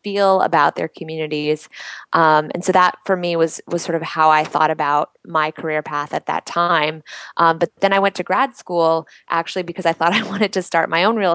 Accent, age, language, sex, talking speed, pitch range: American, 20-39, English, female, 225 wpm, 160-175 Hz